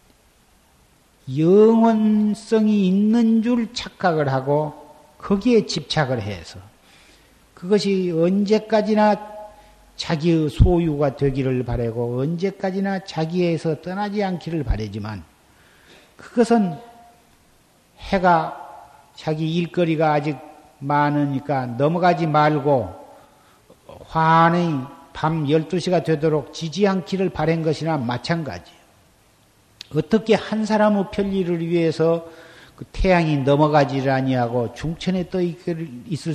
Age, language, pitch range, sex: 50-69, Korean, 140-190 Hz, male